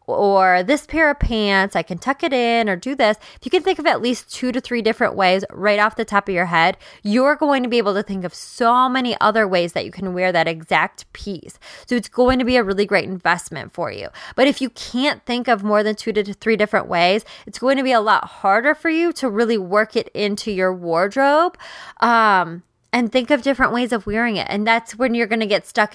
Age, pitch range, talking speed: 20-39, 195-255 Hz, 250 wpm